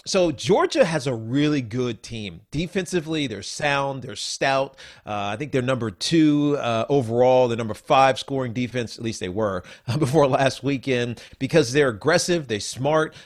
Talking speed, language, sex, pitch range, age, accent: 170 wpm, English, male, 115-150 Hz, 40-59, American